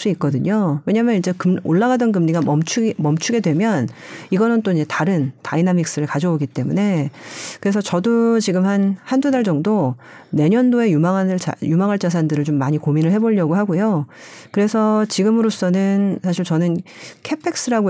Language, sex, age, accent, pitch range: Korean, female, 40-59, native, 155-220 Hz